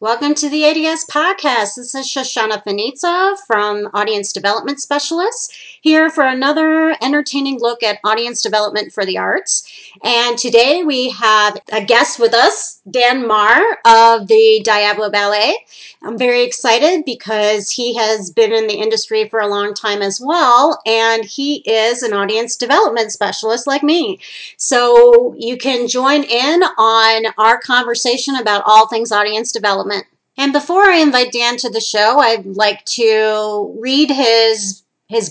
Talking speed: 155 wpm